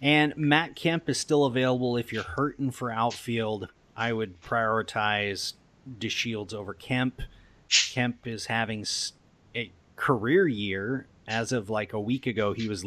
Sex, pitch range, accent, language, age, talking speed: male, 105-140 Hz, American, English, 30-49, 145 wpm